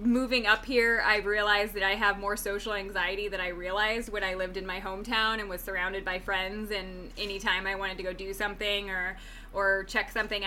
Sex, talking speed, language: female, 210 wpm, English